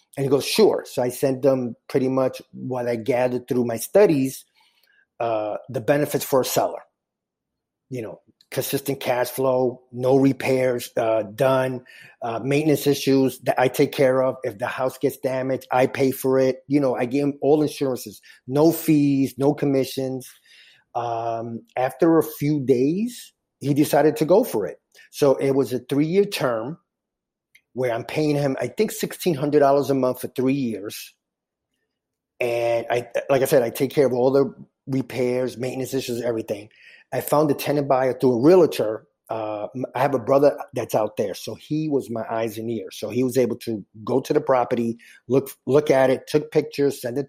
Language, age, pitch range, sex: English, 30-49, 120-140 Hz, male